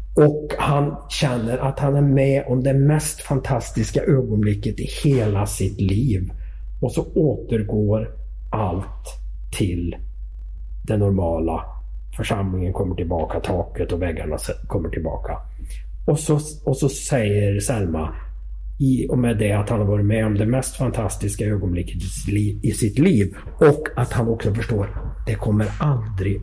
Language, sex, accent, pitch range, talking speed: Swedish, male, native, 80-130 Hz, 140 wpm